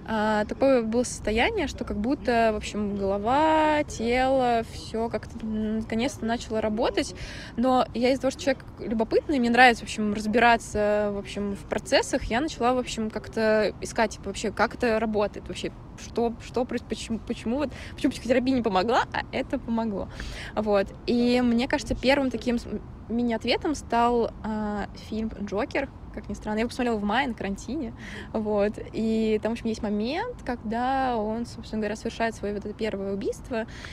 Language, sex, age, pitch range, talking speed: Russian, female, 20-39, 210-245 Hz, 170 wpm